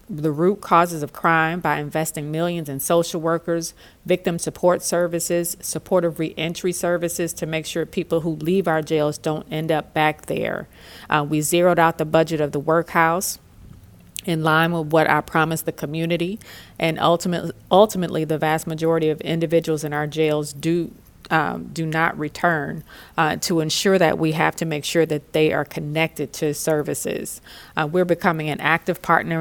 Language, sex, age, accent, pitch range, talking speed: English, female, 40-59, American, 150-170 Hz, 170 wpm